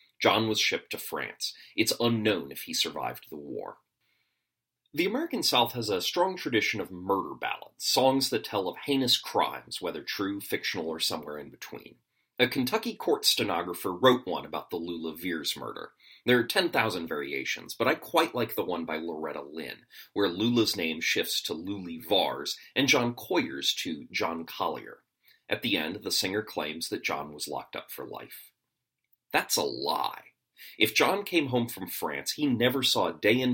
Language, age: English, 30-49